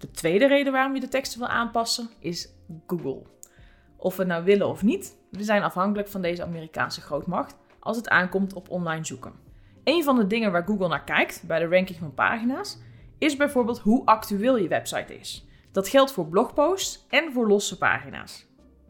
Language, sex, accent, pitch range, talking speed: Dutch, female, Dutch, 170-230 Hz, 185 wpm